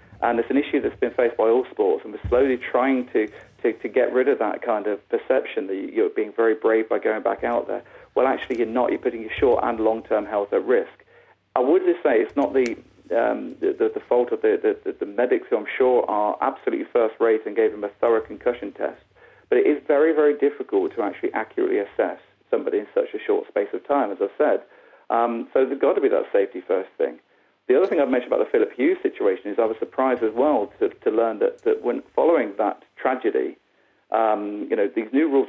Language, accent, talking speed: English, British, 235 wpm